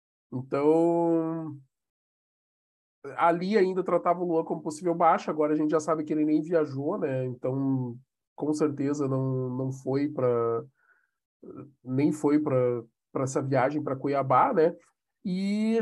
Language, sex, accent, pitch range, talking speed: Portuguese, male, Brazilian, 150-180 Hz, 135 wpm